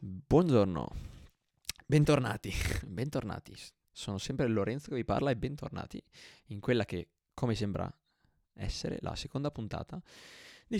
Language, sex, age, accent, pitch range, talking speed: Italian, male, 20-39, native, 95-120 Hz, 115 wpm